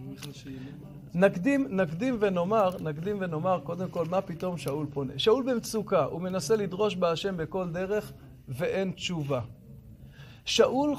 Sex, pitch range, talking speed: male, 150-220 Hz, 120 wpm